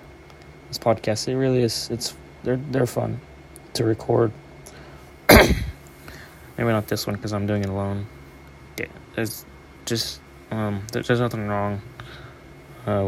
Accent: American